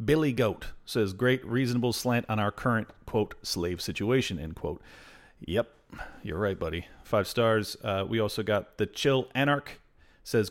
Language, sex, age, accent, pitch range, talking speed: English, male, 40-59, American, 105-125 Hz, 160 wpm